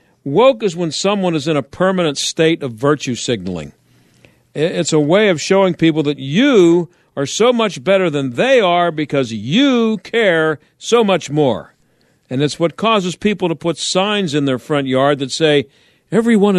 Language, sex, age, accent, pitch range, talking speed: English, male, 50-69, American, 140-185 Hz, 175 wpm